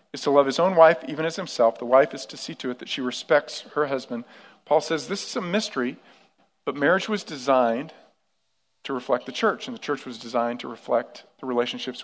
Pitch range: 130-170 Hz